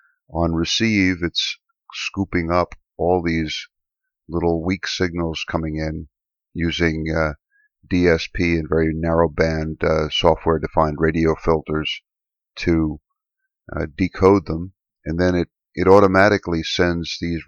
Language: English